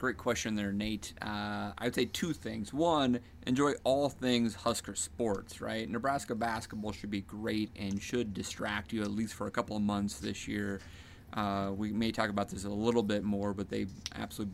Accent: American